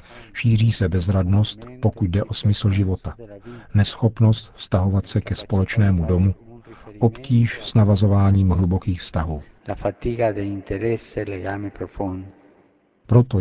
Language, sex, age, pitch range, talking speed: Czech, male, 50-69, 95-115 Hz, 90 wpm